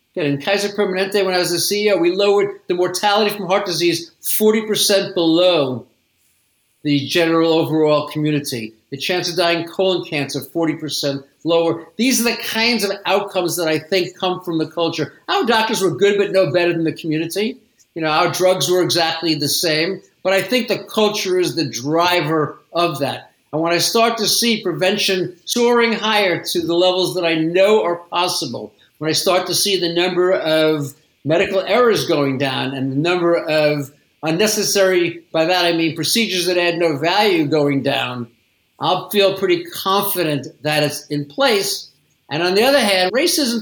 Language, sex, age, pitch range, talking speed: English, male, 50-69, 155-200 Hz, 175 wpm